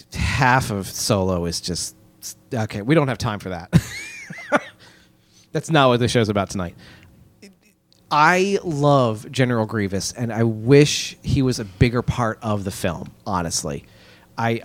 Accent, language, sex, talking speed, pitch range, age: American, English, male, 150 wpm, 110-135 Hz, 30-49